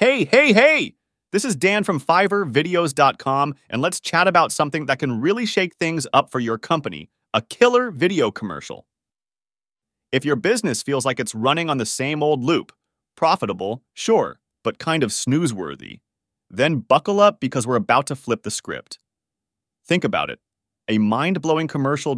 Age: 30-49